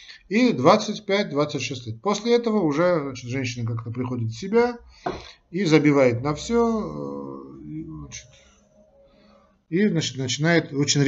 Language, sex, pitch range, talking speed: Russian, male, 125-160 Hz, 110 wpm